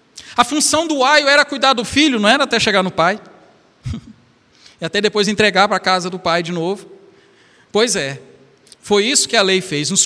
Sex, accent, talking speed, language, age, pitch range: male, Brazilian, 205 wpm, Portuguese, 50-69, 205-280 Hz